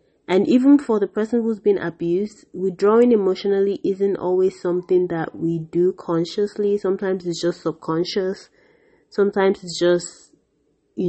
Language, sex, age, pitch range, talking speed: English, female, 30-49, 160-195 Hz, 135 wpm